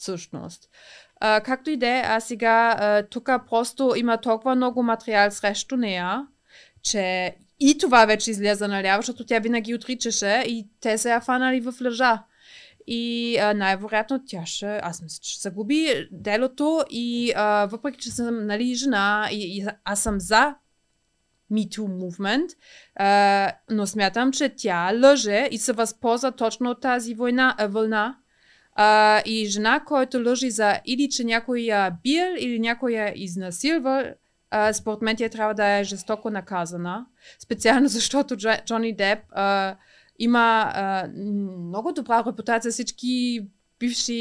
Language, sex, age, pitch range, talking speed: Bulgarian, female, 20-39, 205-245 Hz, 145 wpm